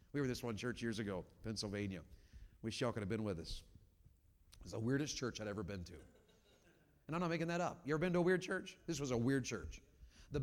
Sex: male